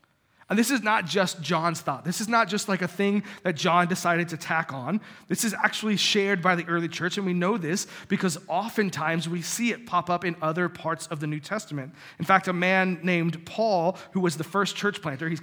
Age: 30-49